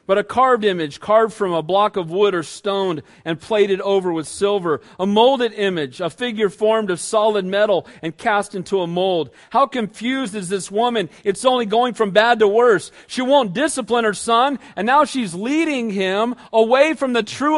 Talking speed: 195 wpm